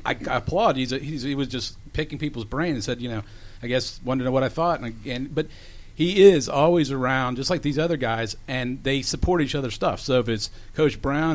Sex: male